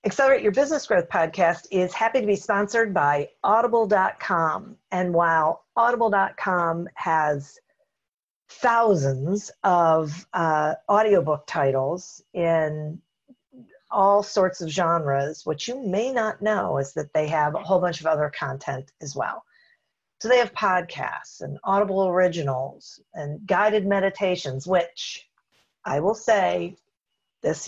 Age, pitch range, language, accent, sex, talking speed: 50-69, 160-220 Hz, English, American, female, 125 wpm